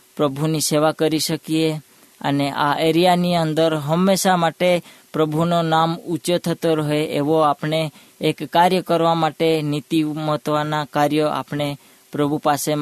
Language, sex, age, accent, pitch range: Hindi, female, 20-39, native, 150-165 Hz